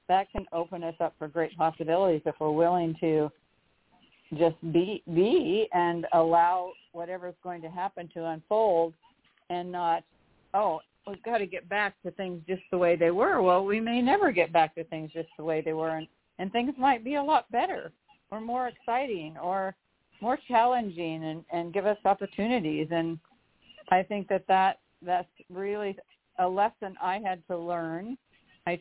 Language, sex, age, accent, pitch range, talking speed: English, female, 50-69, American, 165-200 Hz, 175 wpm